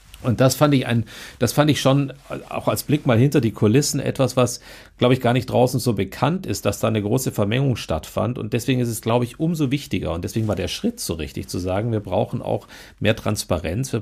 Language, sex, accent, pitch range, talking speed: German, male, German, 90-120 Hz, 235 wpm